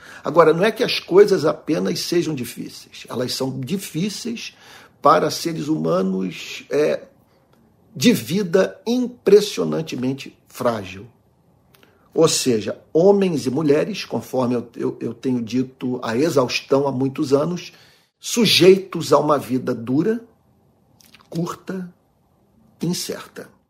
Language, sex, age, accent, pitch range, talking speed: Portuguese, male, 50-69, Brazilian, 130-175 Hz, 105 wpm